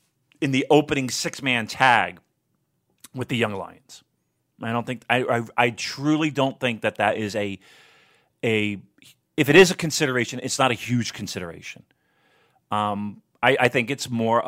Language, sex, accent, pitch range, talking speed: English, male, American, 110-145 Hz, 165 wpm